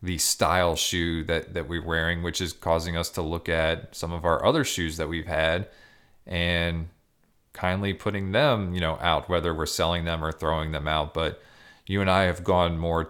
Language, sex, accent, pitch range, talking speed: English, male, American, 85-100 Hz, 200 wpm